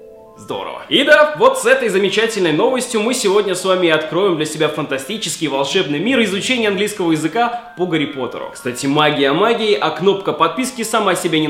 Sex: male